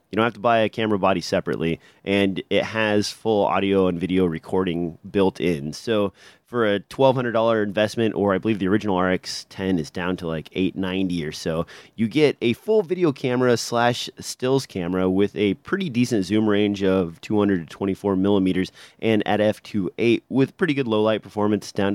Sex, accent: male, American